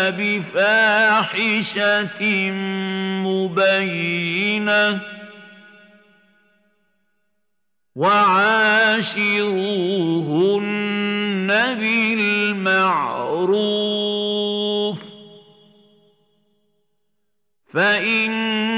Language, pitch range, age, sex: Arabic, 195-210 Hz, 50-69, male